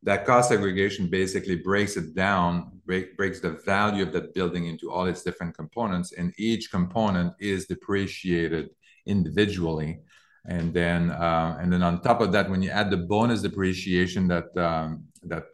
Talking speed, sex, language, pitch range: 165 wpm, male, English, 85-105 Hz